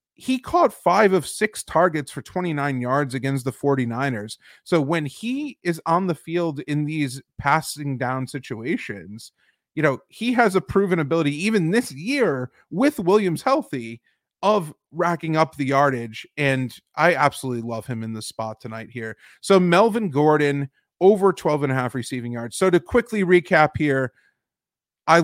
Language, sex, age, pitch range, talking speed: English, male, 30-49, 130-175 Hz, 160 wpm